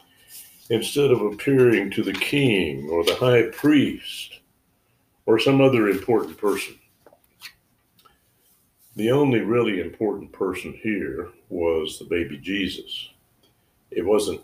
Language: English